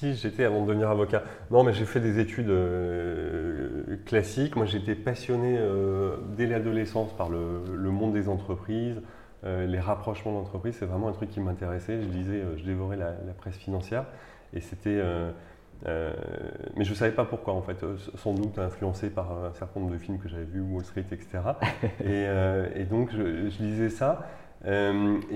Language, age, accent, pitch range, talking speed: French, 30-49, French, 90-105 Hz, 190 wpm